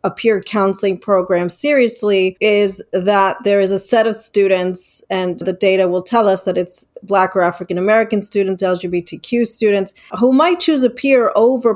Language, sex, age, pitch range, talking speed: English, female, 30-49, 185-215 Hz, 165 wpm